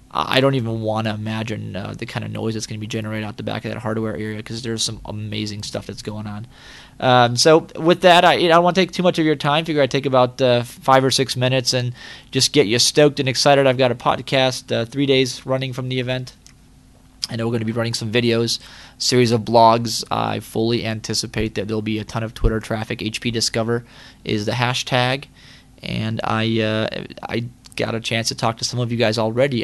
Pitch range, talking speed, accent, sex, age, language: 110-130 Hz, 240 wpm, American, male, 20-39, English